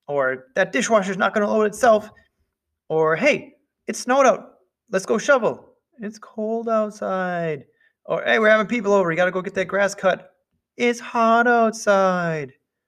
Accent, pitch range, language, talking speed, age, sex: American, 165-220 Hz, English, 170 wpm, 20-39, male